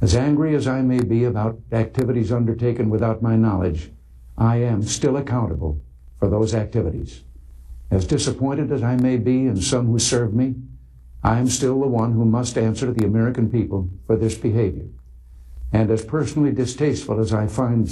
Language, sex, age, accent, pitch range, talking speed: Danish, male, 60-79, American, 95-125 Hz, 175 wpm